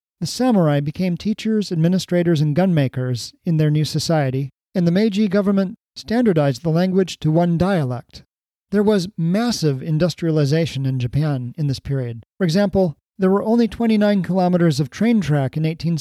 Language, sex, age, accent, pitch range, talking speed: English, male, 40-59, American, 150-195 Hz, 160 wpm